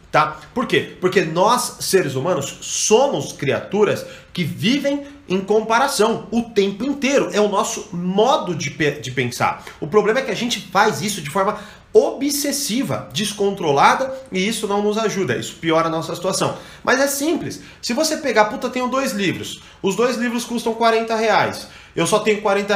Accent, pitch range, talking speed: Brazilian, 155-220 Hz, 175 wpm